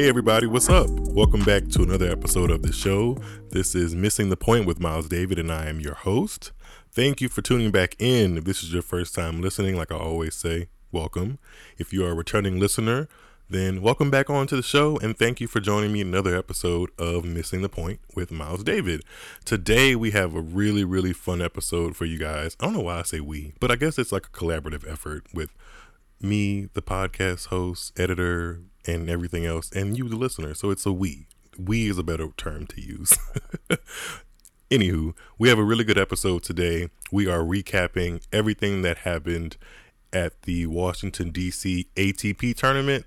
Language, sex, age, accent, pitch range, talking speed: English, male, 20-39, American, 85-100 Hz, 200 wpm